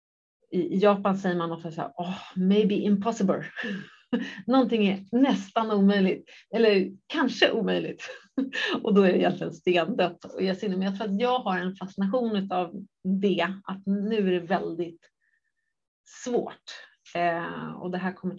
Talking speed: 160 wpm